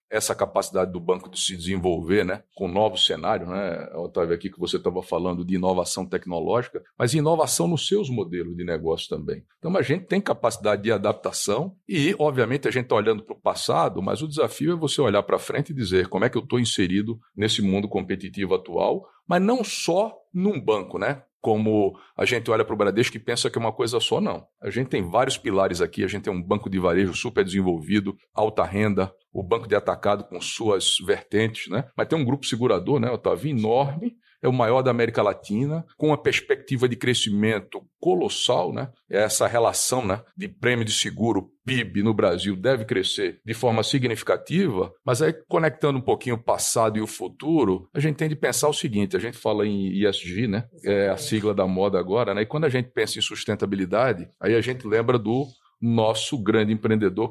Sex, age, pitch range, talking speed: male, 50-69, 100-150 Hz, 200 wpm